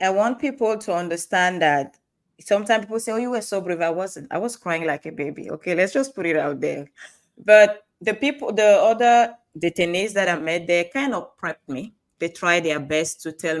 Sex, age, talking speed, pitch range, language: female, 20-39, 215 wpm, 160-200 Hz, English